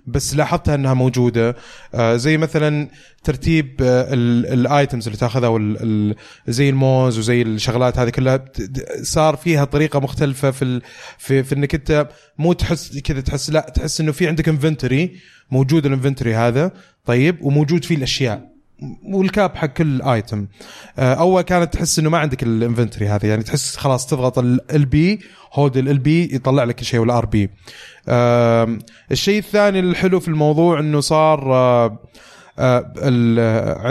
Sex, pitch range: male, 120-150 Hz